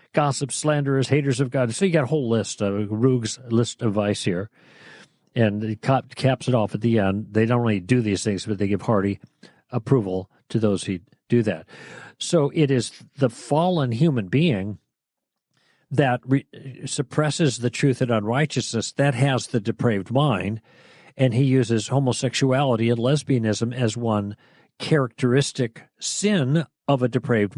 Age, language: 50-69, English